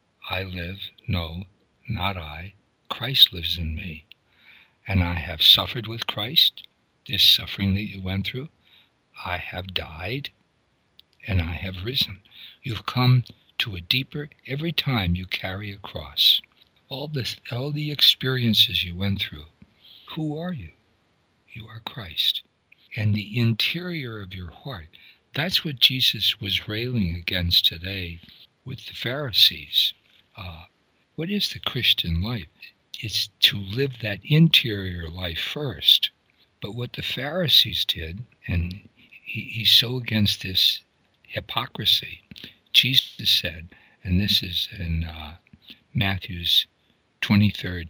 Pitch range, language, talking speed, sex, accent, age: 90-125 Hz, English, 130 wpm, male, American, 60-79